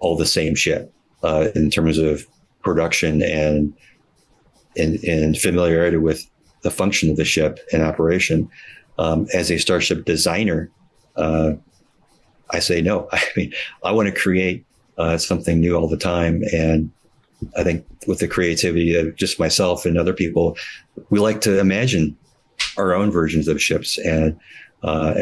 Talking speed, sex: 155 wpm, male